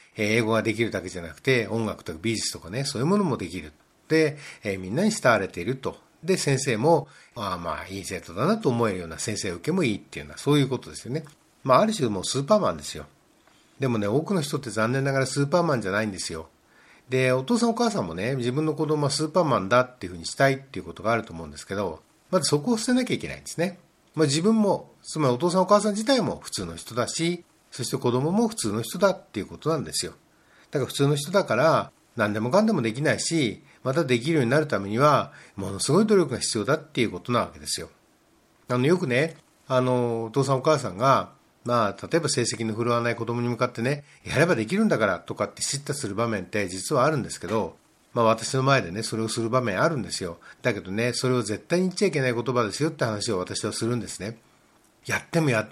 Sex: male